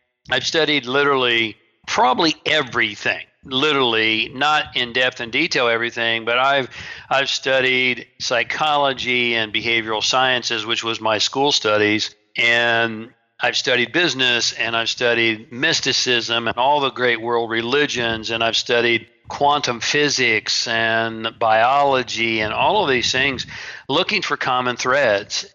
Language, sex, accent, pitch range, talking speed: English, male, American, 110-125 Hz, 130 wpm